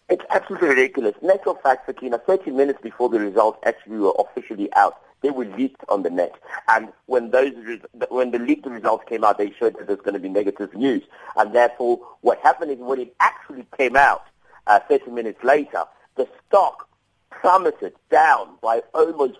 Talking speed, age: 180 wpm, 50-69